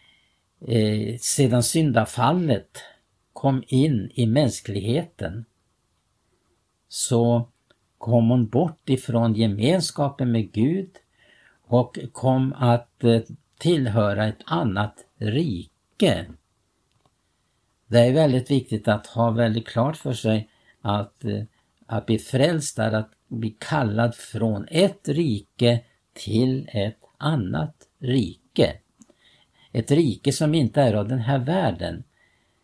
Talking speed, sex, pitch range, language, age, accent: 105 wpm, male, 110-135 Hz, Swedish, 60-79, Norwegian